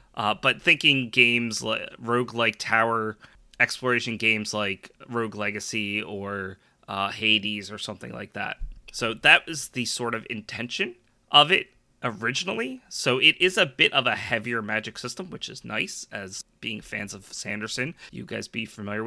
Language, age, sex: English, 30-49, male